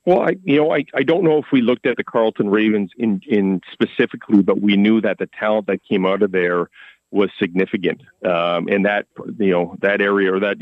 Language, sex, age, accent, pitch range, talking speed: English, male, 40-59, American, 95-105 Hz, 225 wpm